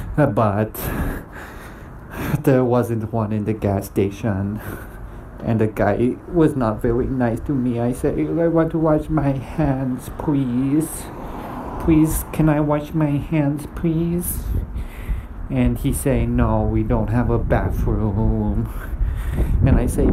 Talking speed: 135 wpm